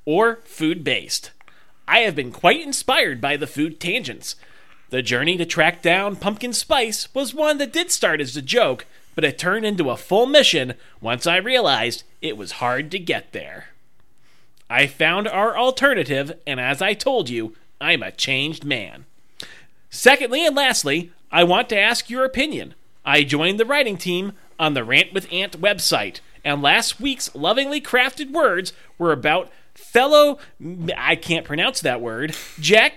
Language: English